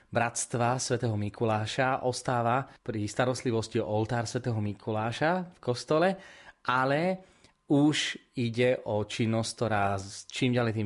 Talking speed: 115 wpm